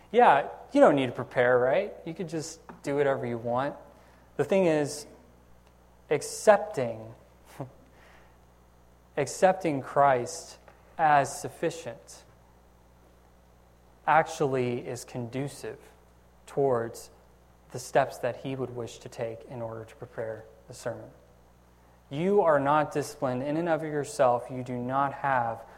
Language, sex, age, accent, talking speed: English, male, 20-39, American, 120 wpm